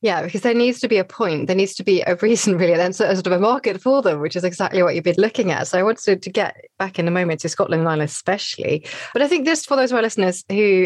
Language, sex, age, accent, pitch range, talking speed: English, female, 20-39, British, 175-230 Hz, 305 wpm